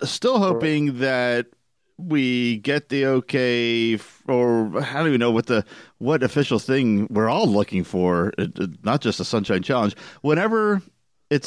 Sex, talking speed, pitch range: male, 155 wpm, 100-130 Hz